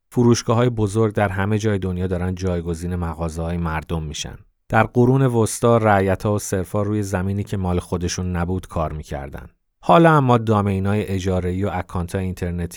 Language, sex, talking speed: Persian, male, 160 wpm